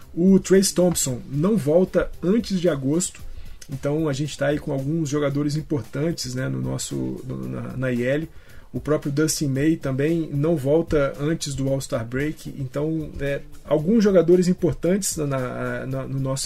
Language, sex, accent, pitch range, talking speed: Portuguese, male, Brazilian, 135-160 Hz, 135 wpm